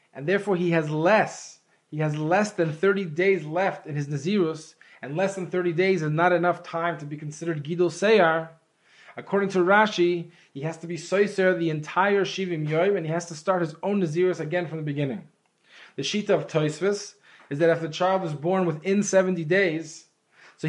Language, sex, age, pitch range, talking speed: English, male, 20-39, 165-200 Hz, 195 wpm